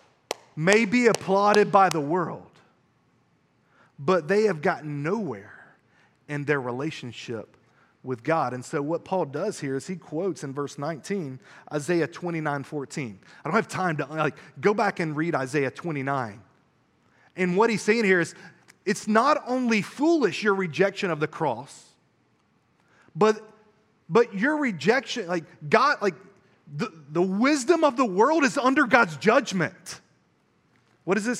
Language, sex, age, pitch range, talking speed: English, male, 30-49, 150-220 Hz, 150 wpm